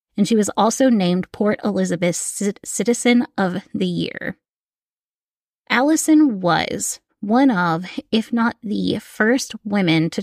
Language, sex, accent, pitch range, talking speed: English, female, American, 180-235 Hz, 125 wpm